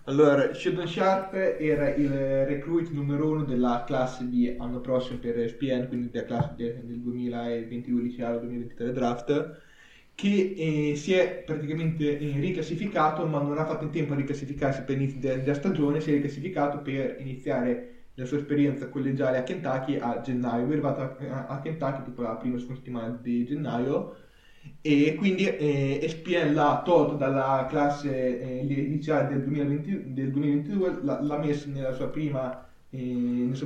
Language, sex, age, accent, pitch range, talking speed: Italian, male, 20-39, native, 130-150 Hz, 150 wpm